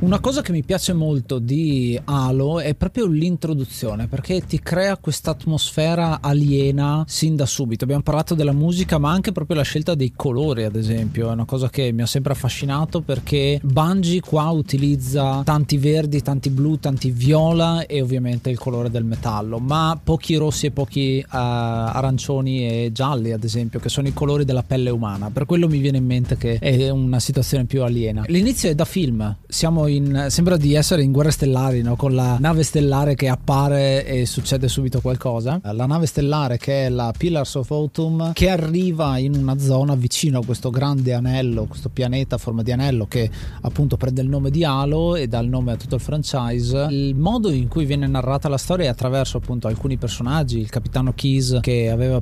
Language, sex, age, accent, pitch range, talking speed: Italian, male, 30-49, native, 125-155 Hz, 195 wpm